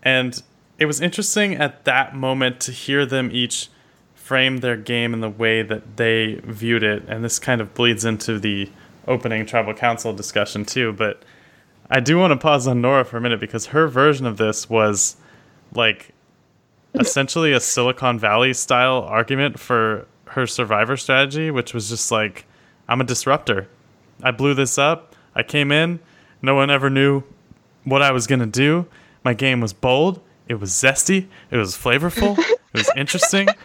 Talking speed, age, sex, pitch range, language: 175 wpm, 20-39, male, 115-160 Hz, English